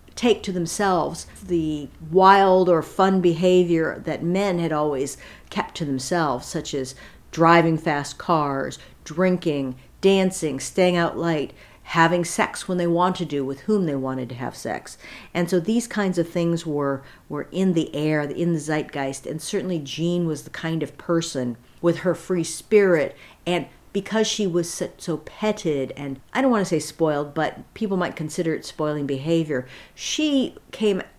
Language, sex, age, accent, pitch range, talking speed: English, female, 50-69, American, 155-190 Hz, 165 wpm